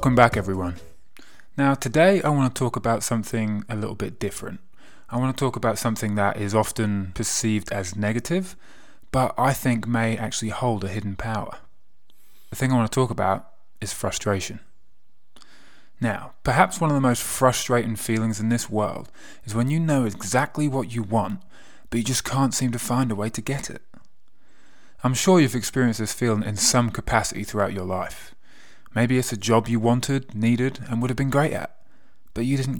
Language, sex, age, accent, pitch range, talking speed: English, male, 20-39, British, 105-125 Hz, 190 wpm